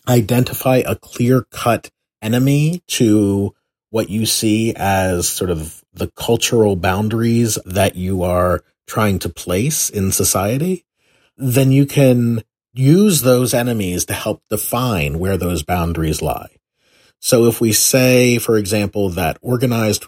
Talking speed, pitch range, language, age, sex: 130 wpm, 95-125 Hz, English, 40-59, male